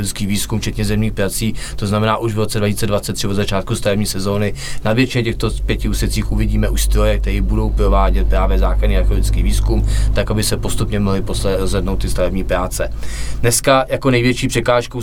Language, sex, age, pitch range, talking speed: Czech, male, 20-39, 100-110 Hz, 165 wpm